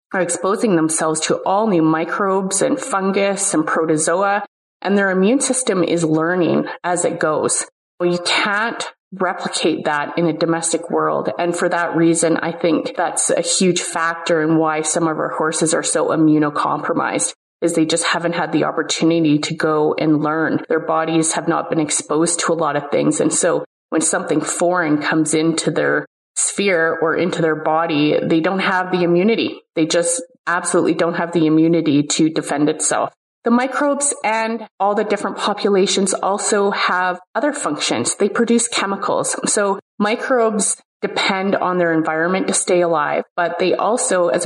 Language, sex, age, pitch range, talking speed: English, female, 30-49, 160-195 Hz, 170 wpm